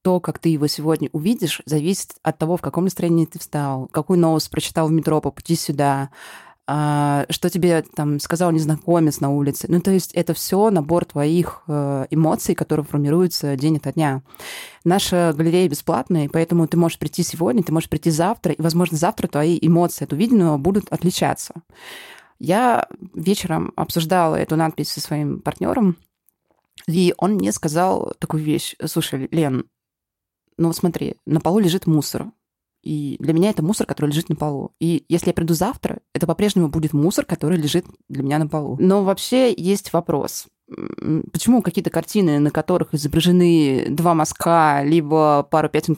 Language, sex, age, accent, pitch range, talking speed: Russian, female, 20-39, native, 155-180 Hz, 160 wpm